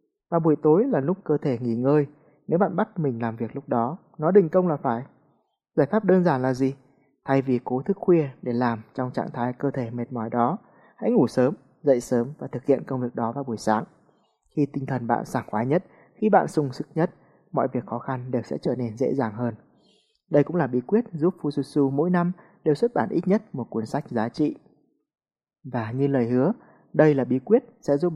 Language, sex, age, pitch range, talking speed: Vietnamese, male, 20-39, 120-165 Hz, 230 wpm